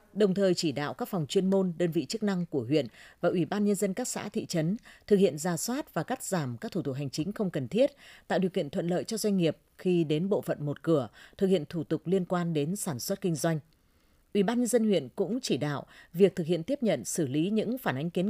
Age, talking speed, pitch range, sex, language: 20-39, 270 wpm, 160-205 Hz, female, Vietnamese